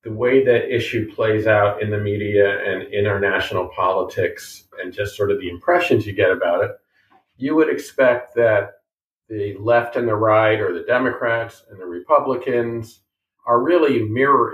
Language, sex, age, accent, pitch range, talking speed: English, male, 50-69, American, 105-130 Hz, 180 wpm